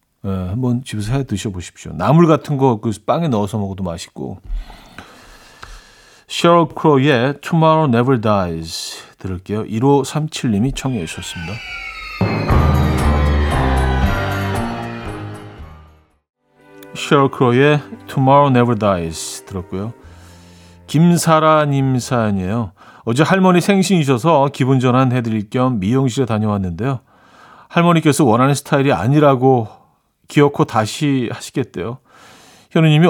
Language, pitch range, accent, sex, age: Korean, 105-160 Hz, native, male, 40-59